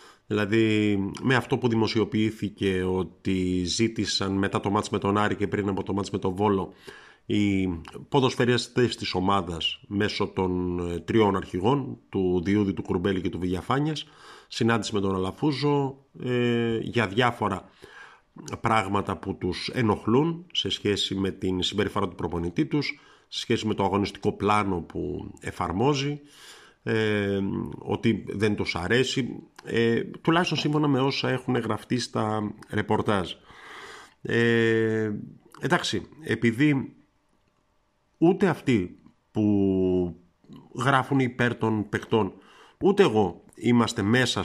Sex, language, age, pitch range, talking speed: male, Greek, 50-69, 95-120 Hz, 125 wpm